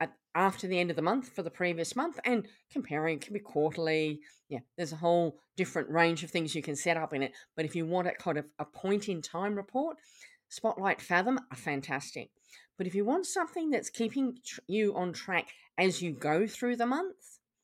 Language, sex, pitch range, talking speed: English, female, 160-200 Hz, 210 wpm